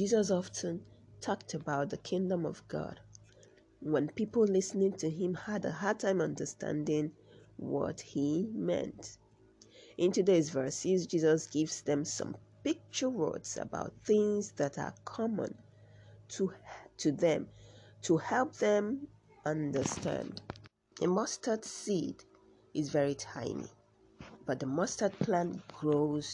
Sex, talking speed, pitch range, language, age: female, 120 wpm, 140-185 Hz, English, 30-49